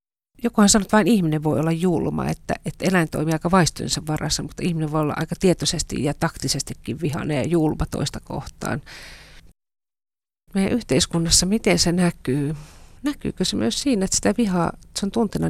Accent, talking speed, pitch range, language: native, 165 wpm, 145-180 Hz, Finnish